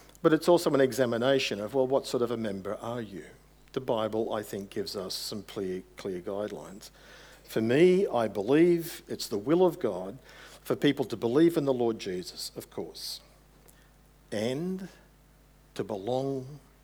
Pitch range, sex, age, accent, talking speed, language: 115-150 Hz, male, 50-69, Australian, 165 wpm, English